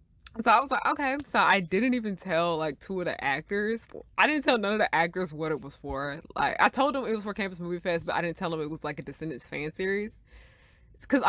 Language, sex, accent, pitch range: English, female, American, 155-200 Hz